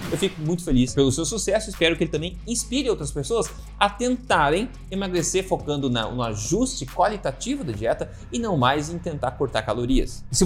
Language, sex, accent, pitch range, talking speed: Portuguese, male, Brazilian, 140-200 Hz, 185 wpm